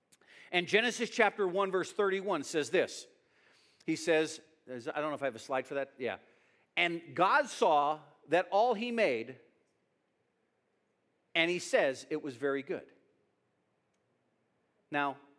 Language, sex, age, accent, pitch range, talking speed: English, male, 50-69, American, 140-210 Hz, 140 wpm